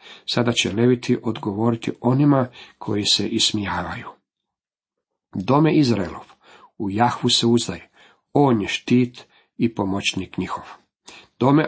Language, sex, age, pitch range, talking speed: Croatian, male, 50-69, 110-140 Hz, 110 wpm